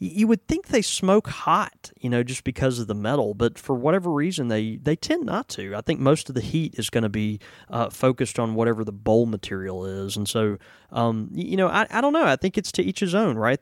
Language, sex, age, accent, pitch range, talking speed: English, male, 20-39, American, 110-150 Hz, 250 wpm